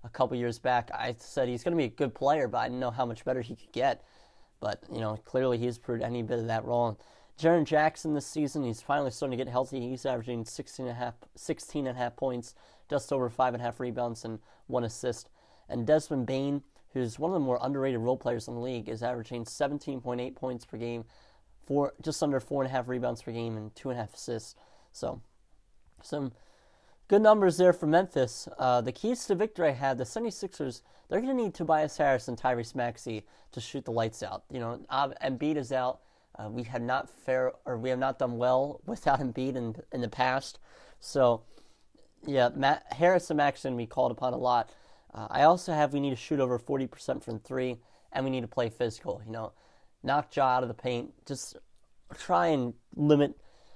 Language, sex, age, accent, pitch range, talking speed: English, male, 30-49, American, 120-145 Hz, 210 wpm